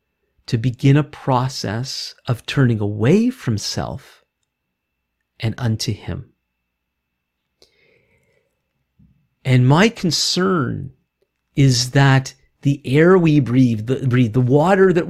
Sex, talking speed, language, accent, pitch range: male, 105 wpm, English, American, 120-155 Hz